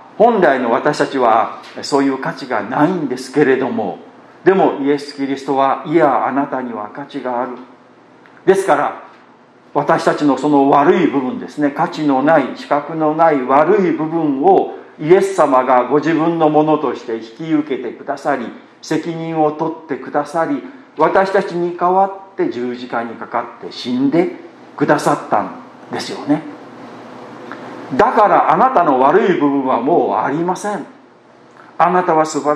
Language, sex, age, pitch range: Japanese, male, 50-69, 135-200 Hz